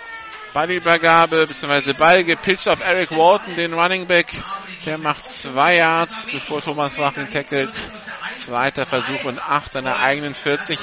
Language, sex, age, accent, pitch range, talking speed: German, male, 50-69, German, 180-290 Hz, 140 wpm